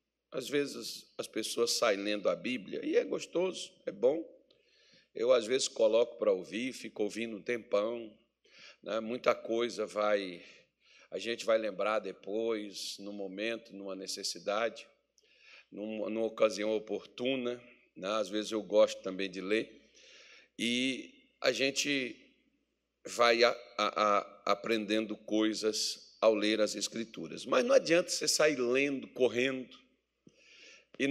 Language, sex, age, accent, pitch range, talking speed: Portuguese, male, 60-79, Brazilian, 105-140 Hz, 135 wpm